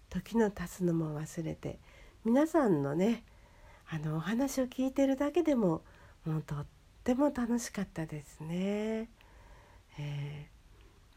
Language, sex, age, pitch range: Japanese, female, 50-69, 140-225 Hz